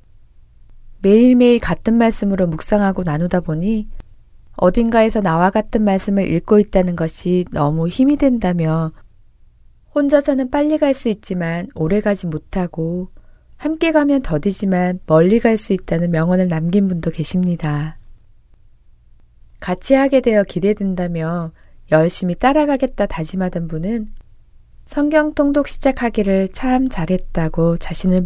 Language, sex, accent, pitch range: Korean, female, native, 165-225 Hz